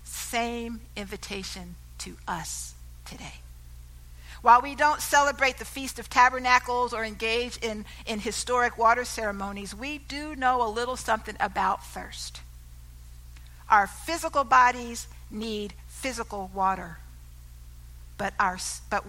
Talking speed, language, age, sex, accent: 115 wpm, English, 50-69, female, American